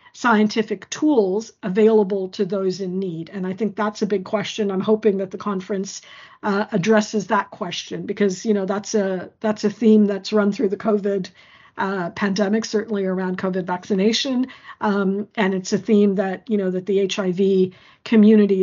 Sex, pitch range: female, 190-220 Hz